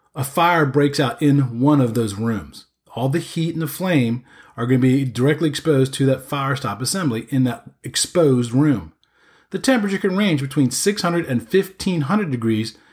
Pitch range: 130-185 Hz